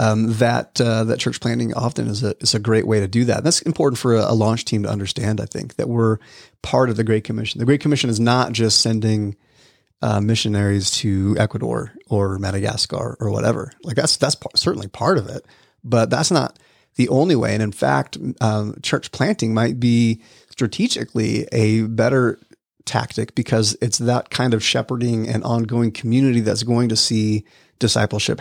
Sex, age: male, 30-49